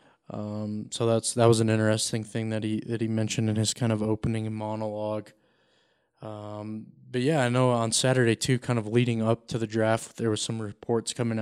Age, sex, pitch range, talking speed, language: 20-39, male, 105-120 Hz, 205 wpm, English